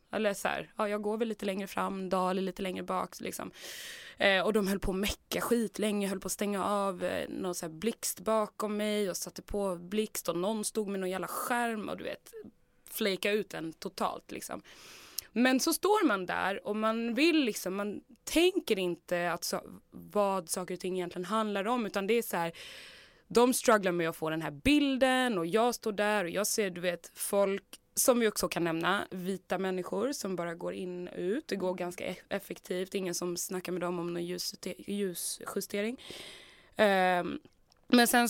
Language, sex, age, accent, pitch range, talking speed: English, female, 20-39, Swedish, 180-215 Hz, 195 wpm